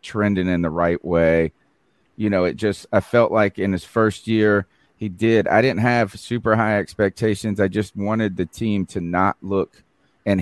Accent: American